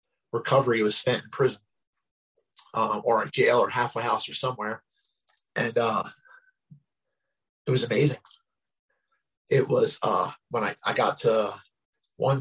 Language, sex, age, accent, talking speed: English, male, 30-49, American, 135 wpm